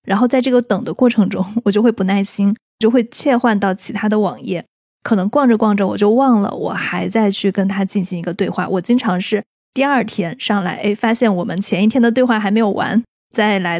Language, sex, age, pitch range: Chinese, female, 20-39, 200-250 Hz